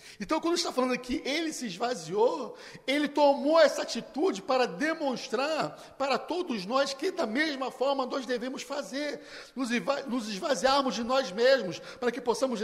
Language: Portuguese